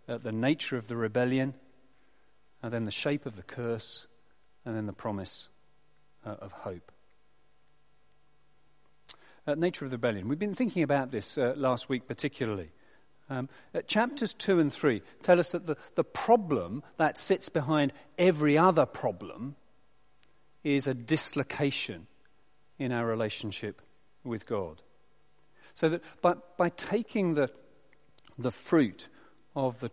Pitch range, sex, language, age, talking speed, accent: 115-150 Hz, male, English, 40-59, 140 wpm, British